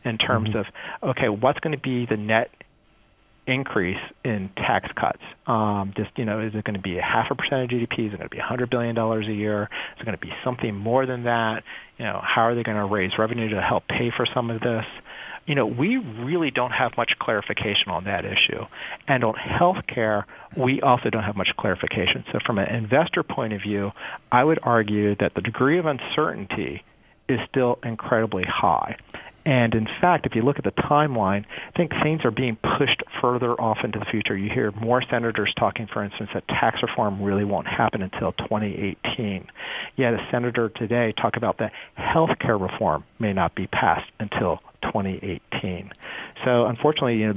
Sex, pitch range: male, 105-125 Hz